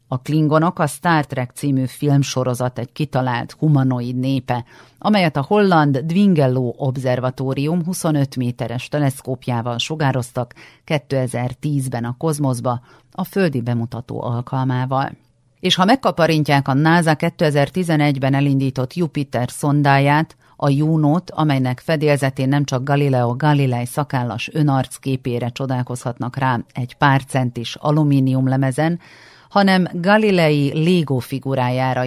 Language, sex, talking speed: Hungarian, female, 105 wpm